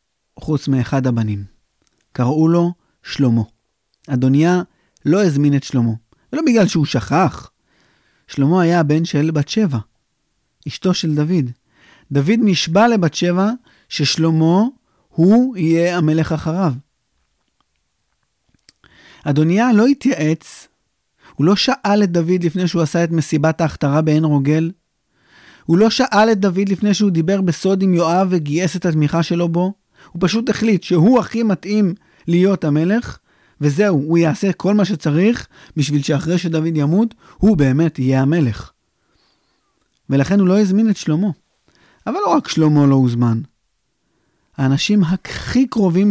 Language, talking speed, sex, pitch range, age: Hebrew, 135 wpm, male, 145-190 Hz, 30-49